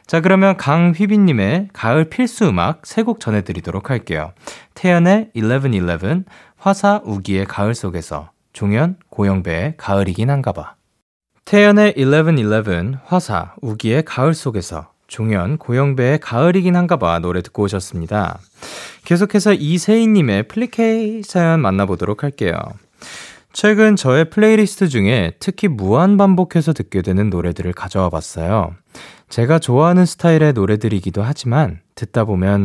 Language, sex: Korean, male